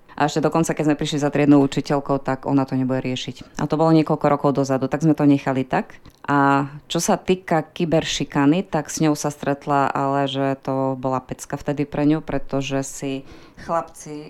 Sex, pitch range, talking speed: female, 130-150 Hz, 195 wpm